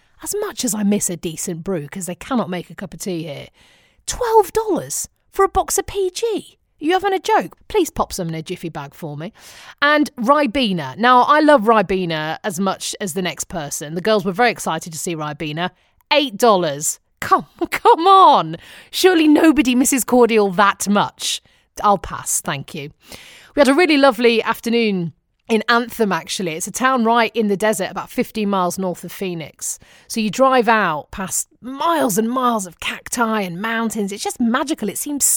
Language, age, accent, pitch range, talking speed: English, 30-49, British, 185-265 Hz, 185 wpm